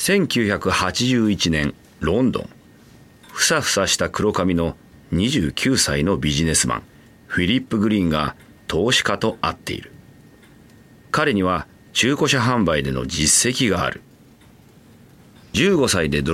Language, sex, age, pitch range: Japanese, male, 40-59, 85-120 Hz